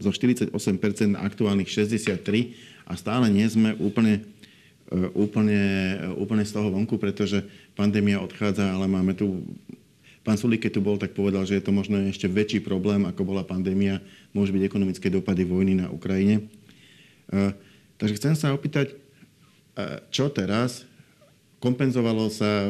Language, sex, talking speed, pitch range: Slovak, male, 135 wpm, 100-110 Hz